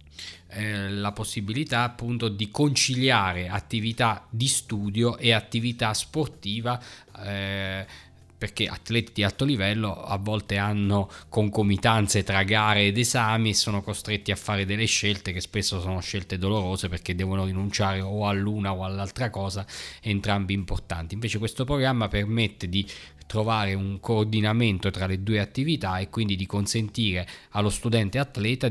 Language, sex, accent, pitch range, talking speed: Italian, male, native, 95-115 Hz, 140 wpm